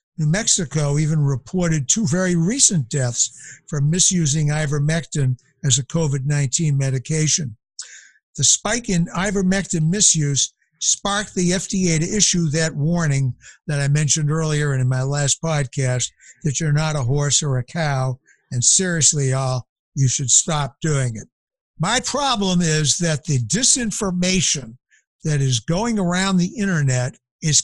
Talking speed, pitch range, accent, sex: 140 wpm, 140-185 Hz, American, male